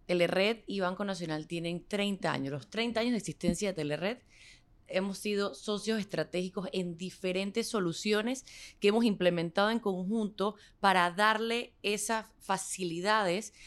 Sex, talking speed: female, 130 wpm